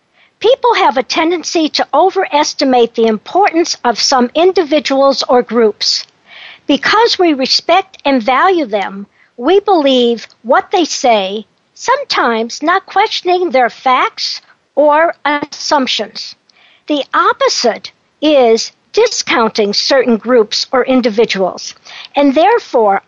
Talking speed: 105 wpm